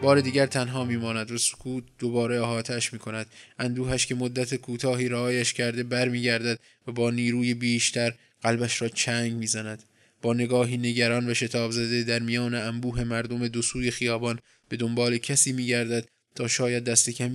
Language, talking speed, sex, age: Persian, 145 wpm, male, 20-39